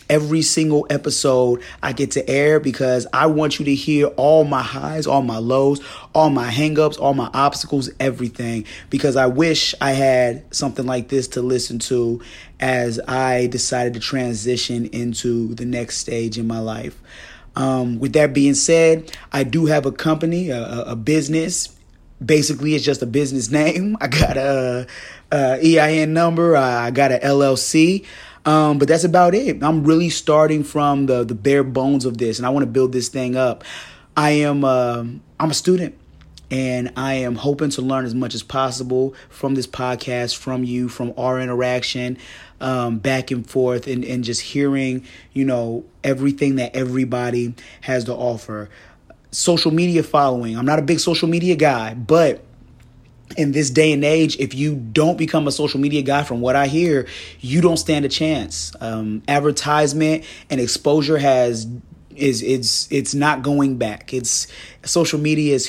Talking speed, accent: 175 wpm, American